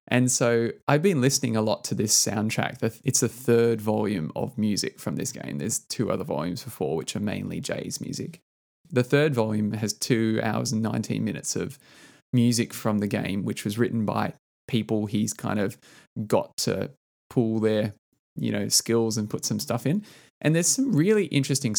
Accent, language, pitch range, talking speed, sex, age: Australian, English, 110-135 Hz, 185 wpm, male, 20-39